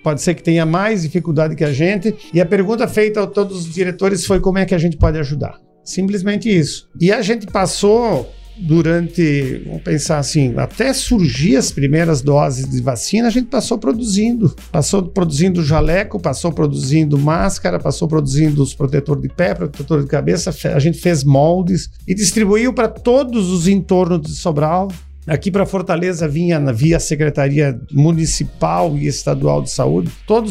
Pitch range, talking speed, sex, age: 155-200 Hz, 165 wpm, male, 50-69